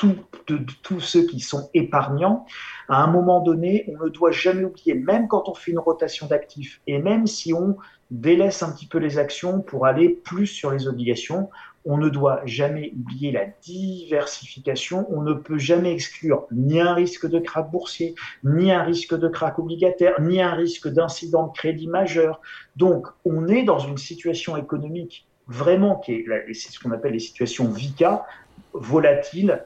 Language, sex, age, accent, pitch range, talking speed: French, male, 40-59, French, 145-180 Hz, 185 wpm